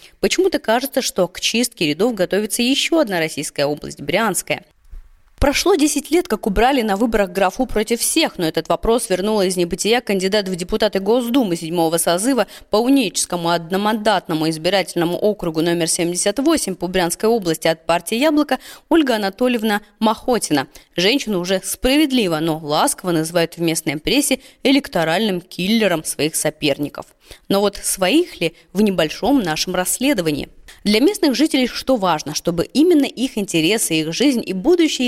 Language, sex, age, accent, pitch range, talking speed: Russian, female, 20-39, native, 170-255 Hz, 140 wpm